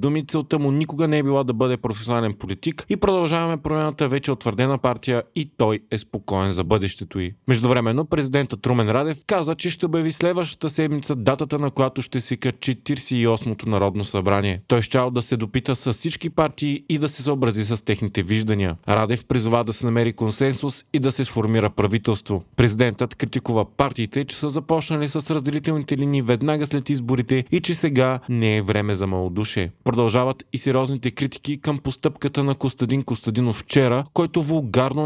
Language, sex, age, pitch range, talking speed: Bulgarian, male, 30-49, 115-145 Hz, 175 wpm